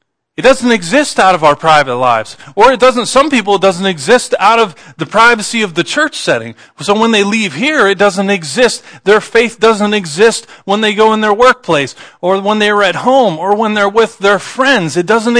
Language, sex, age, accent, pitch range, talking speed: English, male, 40-59, American, 175-235 Hz, 215 wpm